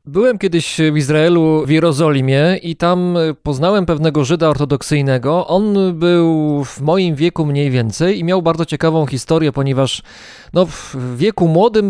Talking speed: 145 wpm